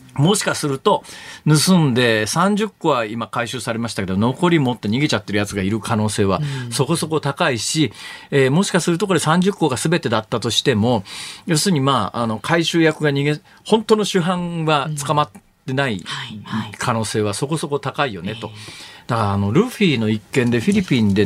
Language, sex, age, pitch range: Japanese, male, 40-59, 125-190 Hz